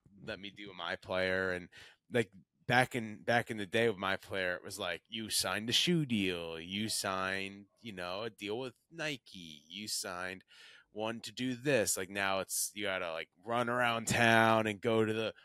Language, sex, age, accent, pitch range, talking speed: English, male, 20-39, American, 95-120 Hz, 200 wpm